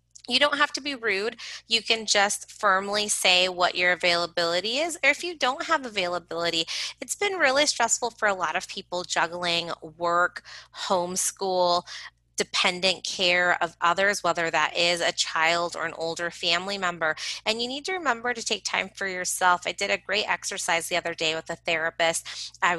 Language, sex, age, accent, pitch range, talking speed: English, female, 20-39, American, 165-195 Hz, 180 wpm